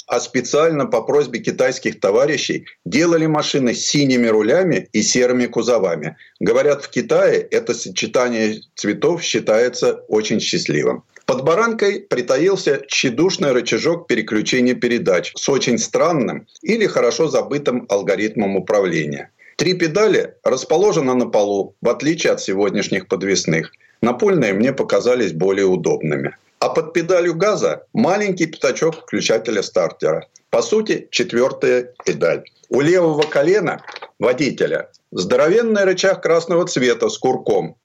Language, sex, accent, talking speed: Russian, male, native, 120 wpm